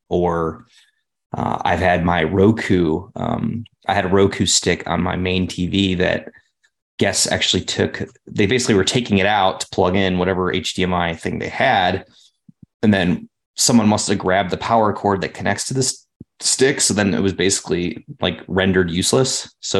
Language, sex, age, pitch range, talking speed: English, male, 20-39, 90-120 Hz, 175 wpm